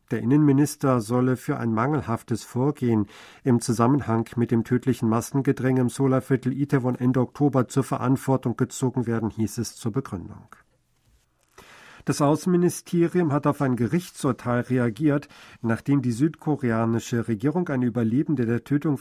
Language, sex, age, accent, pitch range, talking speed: German, male, 50-69, German, 115-145 Hz, 130 wpm